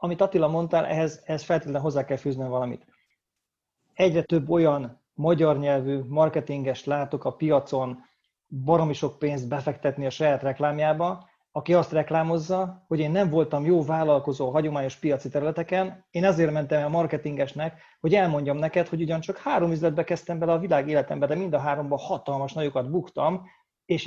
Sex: male